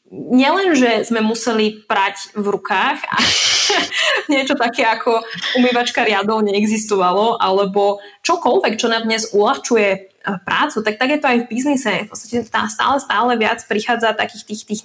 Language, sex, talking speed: Czech, female, 150 wpm